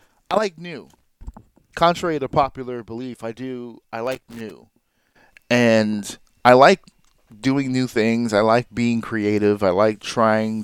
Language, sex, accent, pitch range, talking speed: English, male, American, 110-140 Hz, 140 wpm